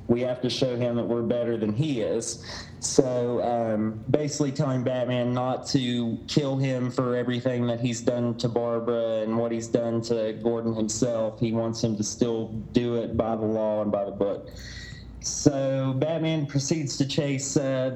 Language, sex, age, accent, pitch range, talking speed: English, male, 30-49, American, 115-135 Hz, 180 wpm